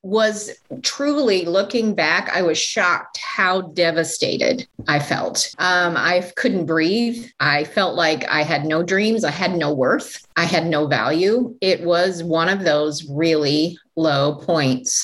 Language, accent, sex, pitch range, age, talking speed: English, American, female, 155-210 Hz, 30-49, 150 wpm